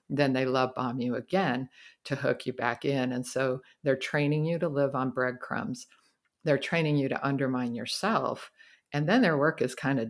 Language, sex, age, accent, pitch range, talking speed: English, female, 50-69, American, 125-145 Hz, 195 wpm